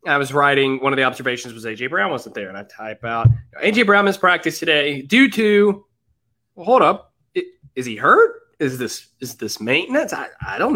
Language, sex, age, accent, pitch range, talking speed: English, male, 20-39, American, 120-195 Hz, 200 wpm